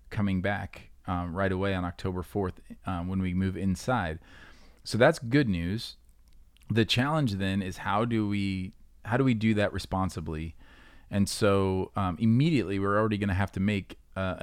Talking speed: 175 wpm